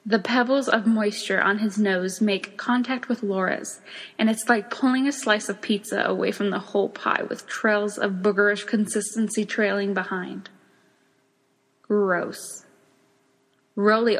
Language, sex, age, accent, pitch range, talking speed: English, female, 10-29, American, 195-225 Hz, 140 wpm